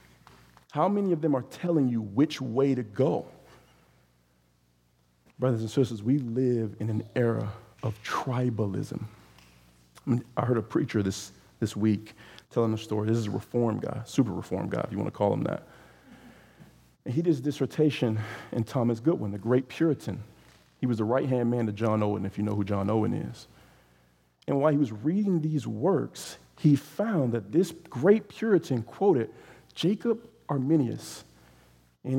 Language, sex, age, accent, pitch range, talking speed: English, male, 40-59, American, 100-150 Hz, 165 wpm